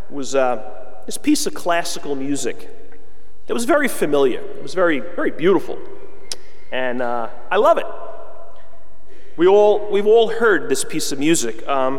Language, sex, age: English, male, 30-49